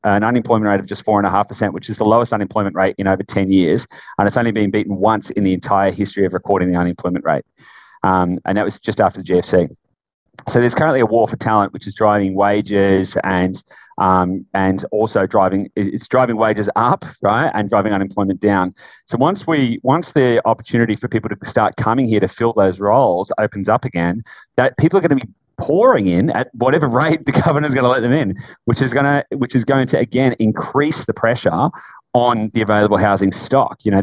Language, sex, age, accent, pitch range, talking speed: English, male, 30-49, Australian, 100-125 Hz, 215 wpm